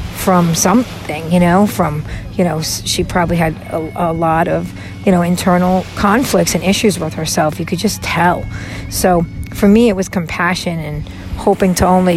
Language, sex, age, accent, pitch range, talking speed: English, female, 40-59, American, 150-190 Hz, 180 wpm